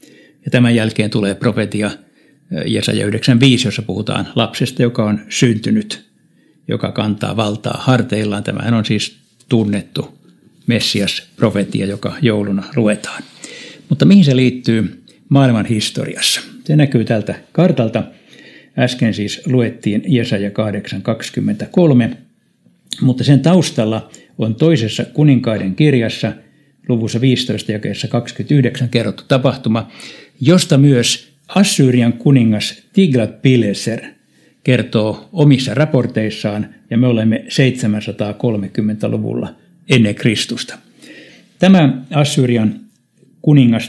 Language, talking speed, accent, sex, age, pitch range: Finnish, 100 wpm, native, male, 60-79, 110-135 Hz